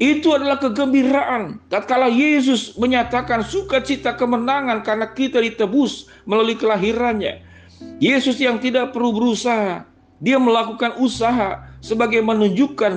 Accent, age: native, 50-69